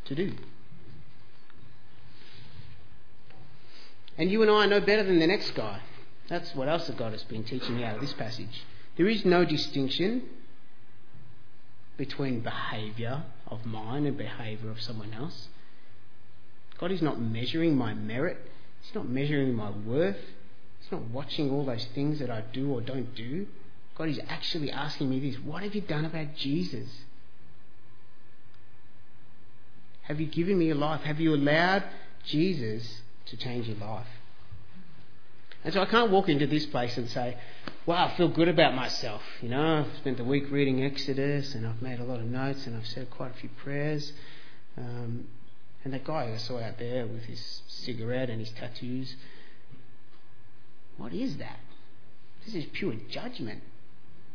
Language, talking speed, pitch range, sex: English, 160 wpm, 115-150 Hz, male